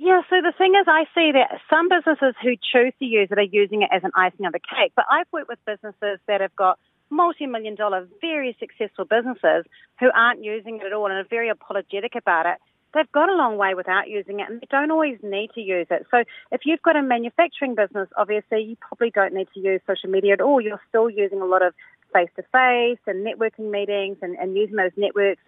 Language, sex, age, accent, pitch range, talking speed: English, female, 40-59, Australian, 190-250 Hz, 230 wpm